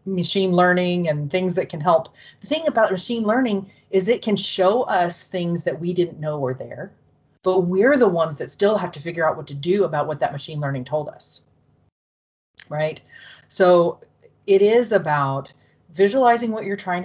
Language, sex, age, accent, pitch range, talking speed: English, female, 30-49, American, 150-190 Hz, 185 wpm